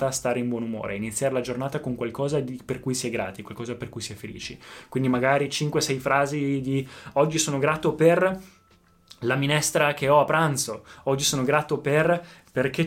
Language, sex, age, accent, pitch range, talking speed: Italian, male, 20-39, native, 125-150 Hz, 195 wpm